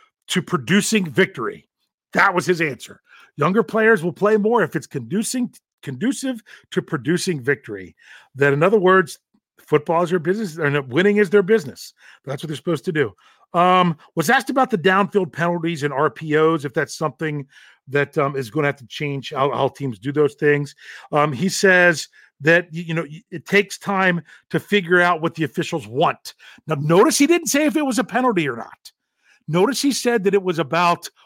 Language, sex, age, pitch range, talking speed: English, male, 40-59, 150-205 Hz, 190 wpm